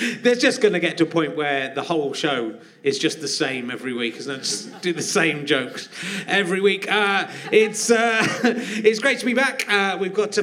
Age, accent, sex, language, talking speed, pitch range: 30-49, British, male, English, 215 wpm, 160-215 Hz